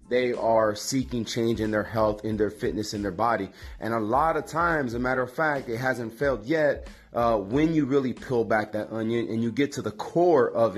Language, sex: English, male